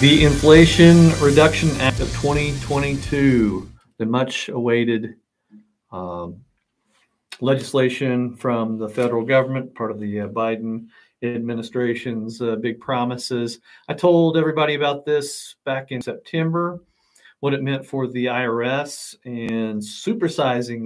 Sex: male